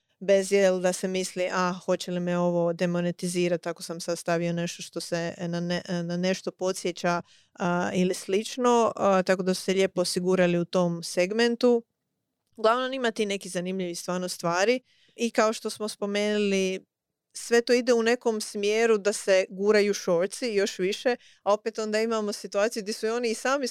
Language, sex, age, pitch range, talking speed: Croatian, female, 30-49, 185-220 Hz, 175 wpm